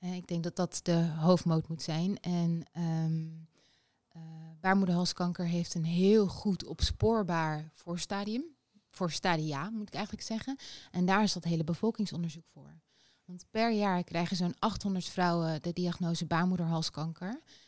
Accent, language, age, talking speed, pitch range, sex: Dutch, Dutch, 20-39, 130 wpm, 170-200 Hz, female